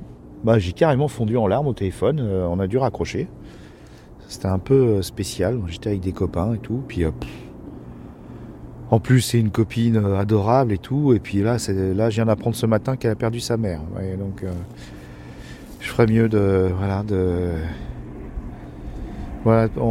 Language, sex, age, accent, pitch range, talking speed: French, male, 40-59, French, 95-135 Hz, 175 wpm